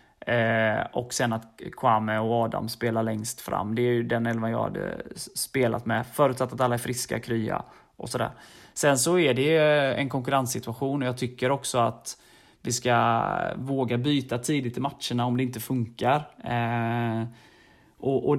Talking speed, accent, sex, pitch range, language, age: 165 wpm, native, male, 115-130 Hz, Swedish, 20-39